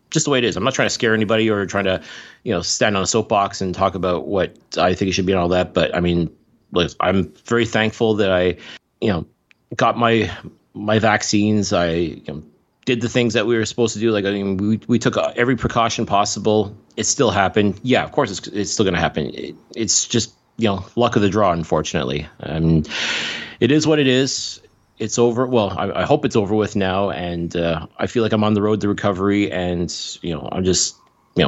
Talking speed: 235 wpm